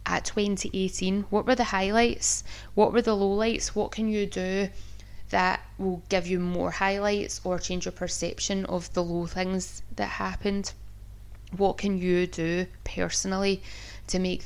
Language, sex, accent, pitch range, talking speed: English, female, British, 125-195 Hz, 155 wpm